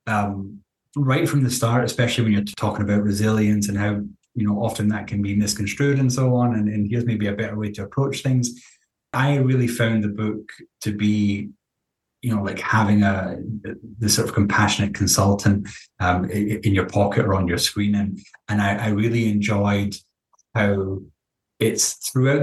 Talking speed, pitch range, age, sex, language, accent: 175 wpm, 100-115 Hz, 20-39, male, English, British